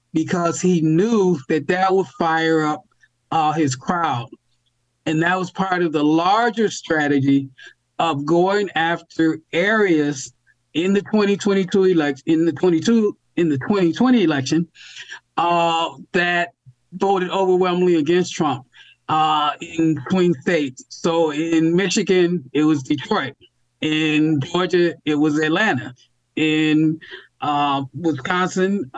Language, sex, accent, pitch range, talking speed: English, male, American, 150-180 Hz, 120 wpm